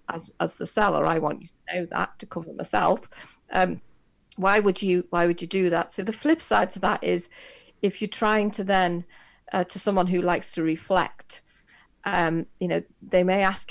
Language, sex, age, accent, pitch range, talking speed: English, female, 40-59, British, 165-190 Hz, 205 wpm